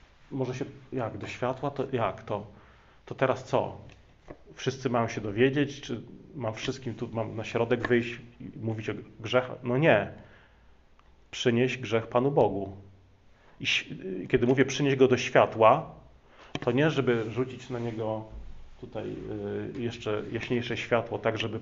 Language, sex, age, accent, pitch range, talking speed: Polish, male, 30-49, native, 105-130 Hz, 150 wpm